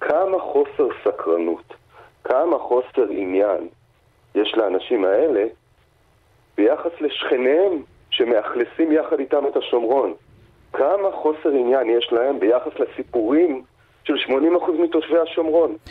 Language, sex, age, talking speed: Hebrew, male, 40-59, 100 wpm